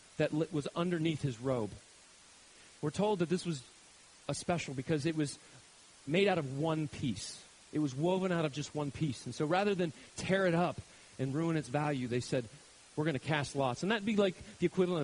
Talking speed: 210 wpm